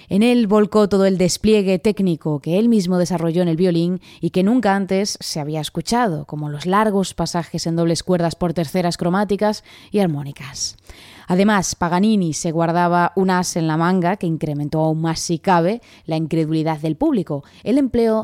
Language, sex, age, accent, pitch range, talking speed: Spanish, female, 20-39, Spanish, 165-200 Hz, 180 wpm